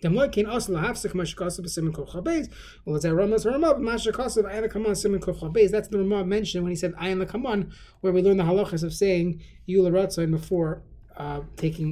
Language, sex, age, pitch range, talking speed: English, male, 20-39, 160-200 Hz, 110 wpm